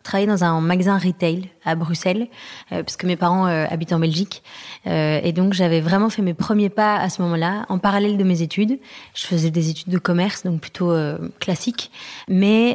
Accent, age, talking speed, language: French, 20-39, 205 wpm, French